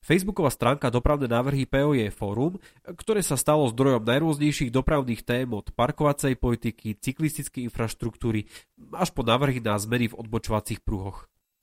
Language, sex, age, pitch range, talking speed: Slovak, male, 30-49, 110-145 Hz, 135 wpm